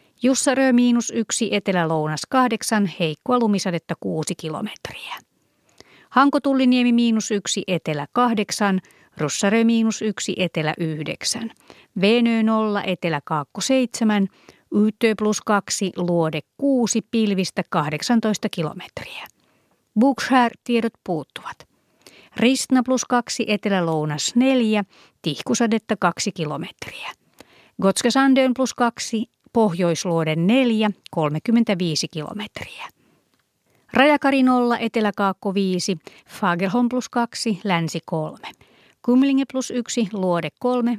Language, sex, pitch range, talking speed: Finnish, female, 175-240 Hz, 85 wpm